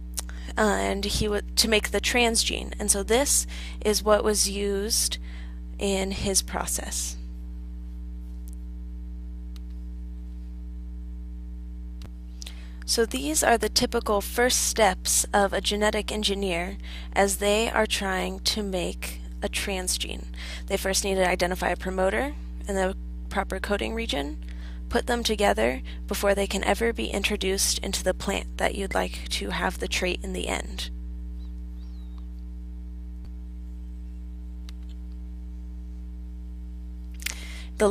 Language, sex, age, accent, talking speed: English, female, 10-29, American, 110 wpm